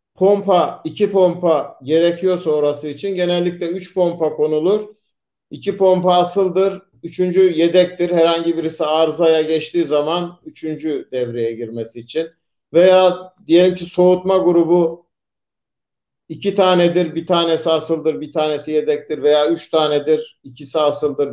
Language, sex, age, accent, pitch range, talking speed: Turkish, male, 50-69, native, 155-185 Hz, 120 wpm